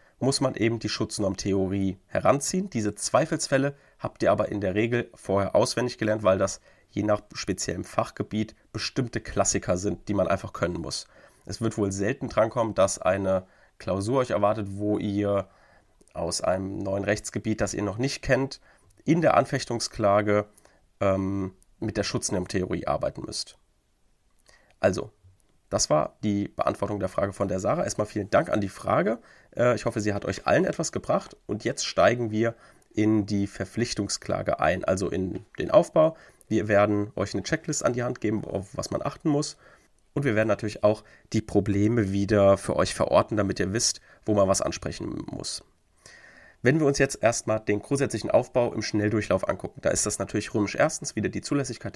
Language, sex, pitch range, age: German, male, 100-120 Hz, 30-49